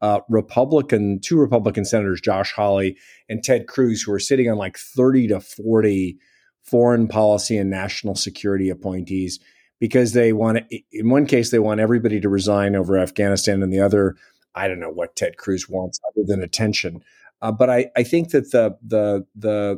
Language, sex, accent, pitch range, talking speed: English, male, American, 100-120 Hz, 180 wpm